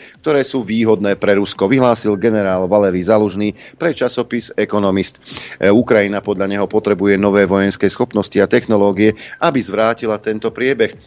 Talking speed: 135 wpm